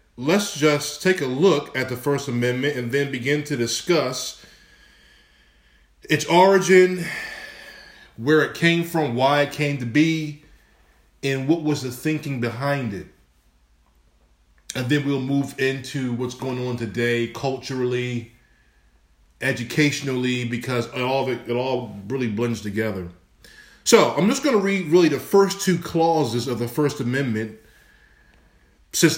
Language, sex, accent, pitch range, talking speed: English, male, American, 115-155 Hz, 140 wpm